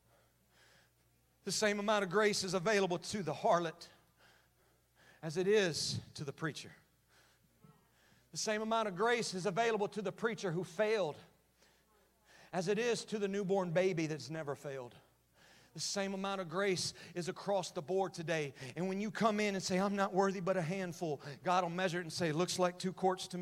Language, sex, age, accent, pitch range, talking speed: English, male, 40-59, American, 160-200 Hz, 185 wpm